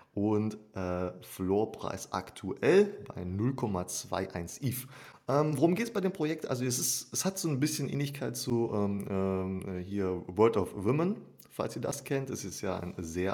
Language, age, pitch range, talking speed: German, 30-49, 95-130 Hz, 175 wpm